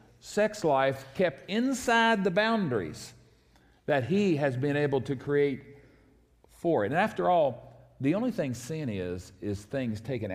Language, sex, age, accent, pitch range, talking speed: English, male, 50-69, American, 125-195 Hz, 150 wpm